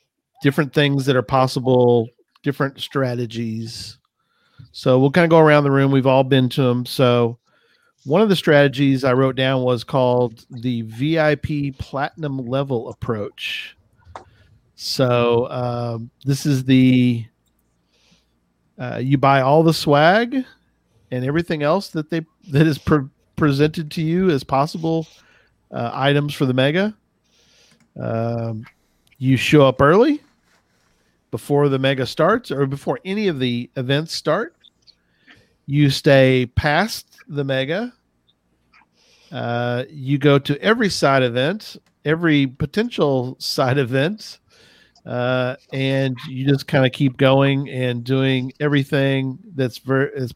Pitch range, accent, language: 125-150 Hz, American, English